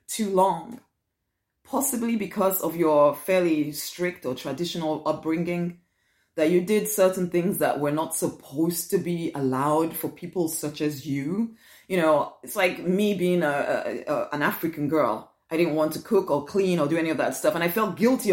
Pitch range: 160-225 Hz